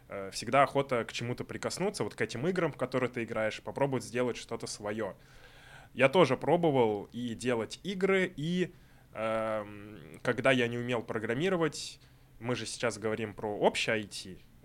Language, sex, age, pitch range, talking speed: Russian, male, 20-39, 110-130 Hz, 155 wpm